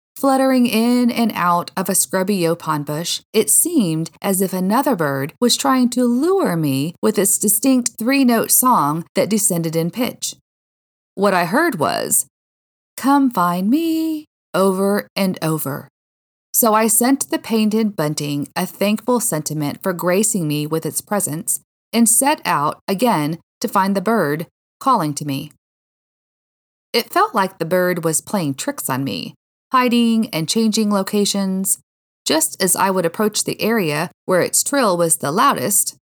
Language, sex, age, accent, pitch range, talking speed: English, female, 40-59, American, 165-245 Hz, 155 wpm